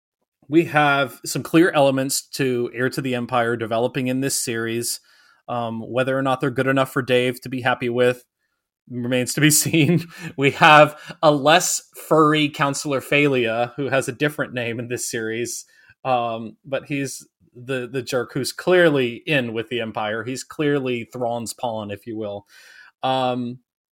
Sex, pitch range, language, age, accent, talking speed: male, 115-140 Hz, English, 30-49, American, 165 wpm